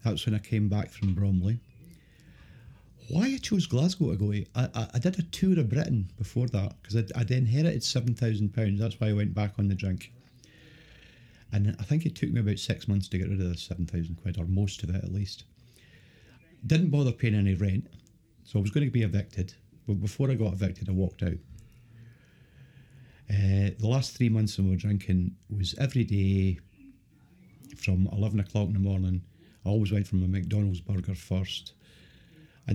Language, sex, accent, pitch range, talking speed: English, male, British, 95-120 Hz, 190 wpm